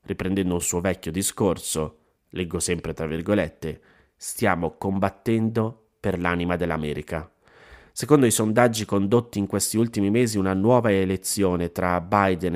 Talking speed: 130 wpm